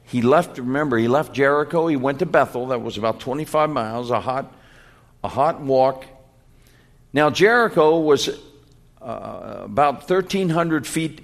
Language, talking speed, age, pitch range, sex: English, 145 wpm, 60-79, 120-155 Hz, male